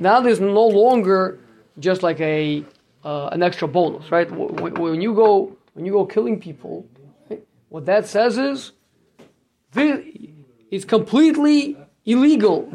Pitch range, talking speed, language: 160-225 Hz, 125 wpm, English